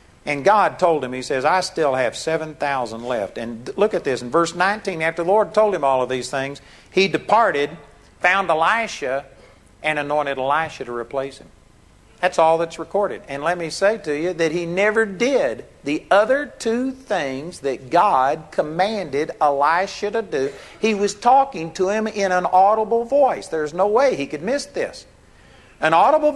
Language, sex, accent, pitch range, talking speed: English, male, American, 135-200 Hz, 180 wpm